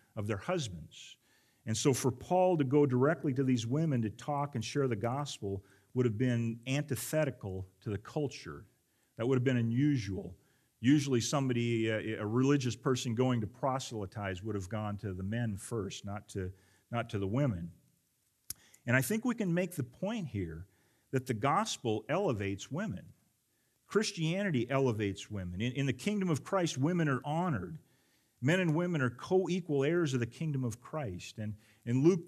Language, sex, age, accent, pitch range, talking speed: English, male, 40-59, American, 110-150 Hz, 170 wpm